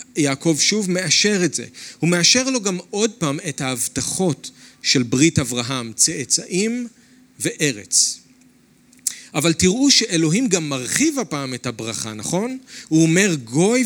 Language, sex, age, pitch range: Hebrew, male, 40-59, 135-195 Hz